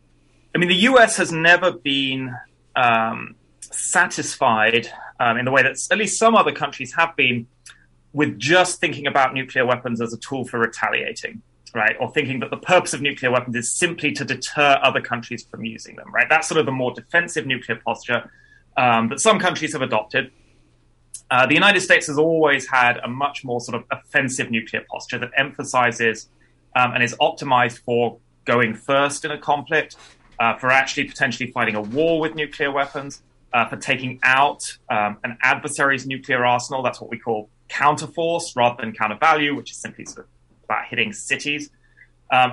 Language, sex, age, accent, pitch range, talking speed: English, male, 20-39, British, 115-145 Hz, 180 wpm